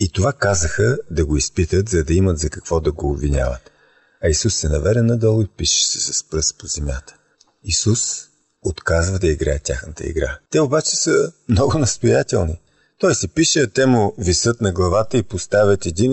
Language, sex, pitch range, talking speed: Bulgarian, male, 85-120 Hz, 180 wpm